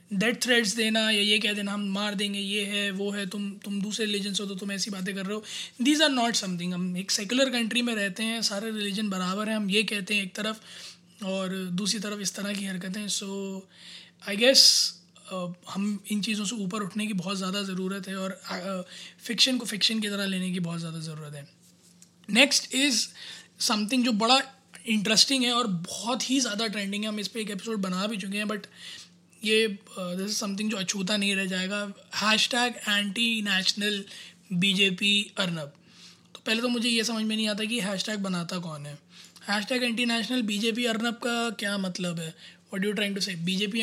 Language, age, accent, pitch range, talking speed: Hindi, 20-39, native, 190-220 Hz, 205 wpm